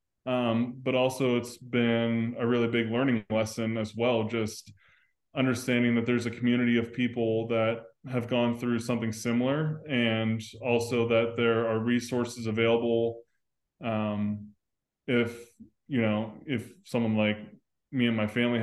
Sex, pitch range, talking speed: male, 110-120 Hz, 140 wpm